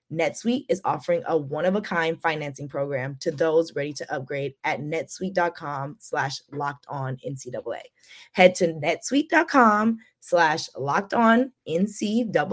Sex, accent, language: female, American, English